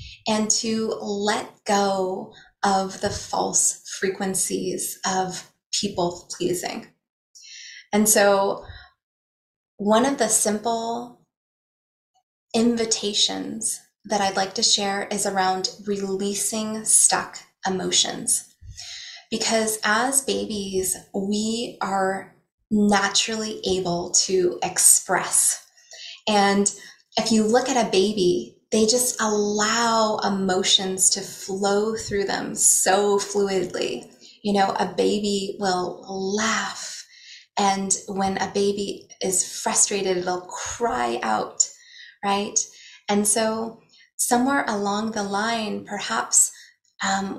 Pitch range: 195-225 Hz